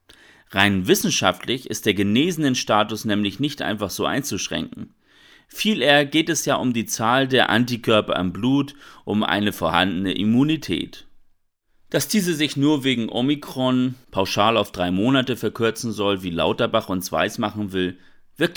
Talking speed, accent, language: 145 wpm, German, German